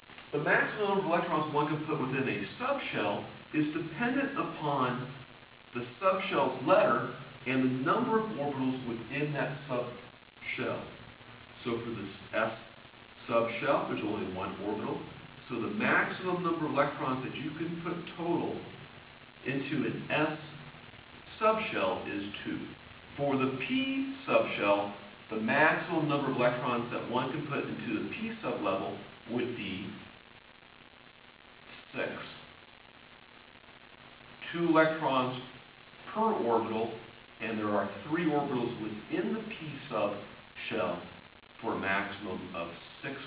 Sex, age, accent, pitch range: male, 40-59, American, 110-150 Hz